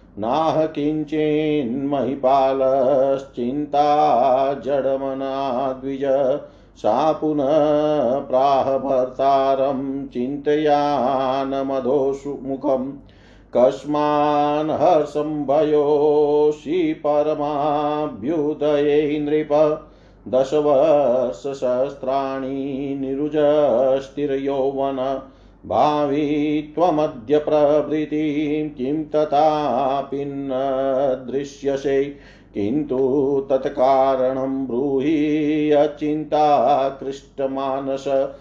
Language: Hindi